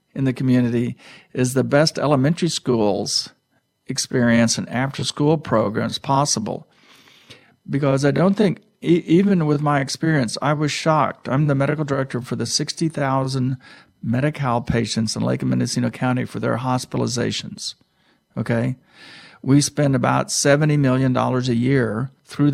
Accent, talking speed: American, 140 wpm